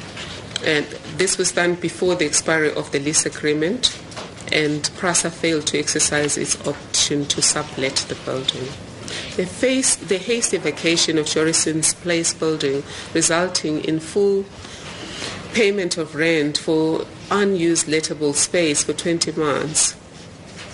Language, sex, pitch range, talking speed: English, female, 150-175 Hz, 125 wpm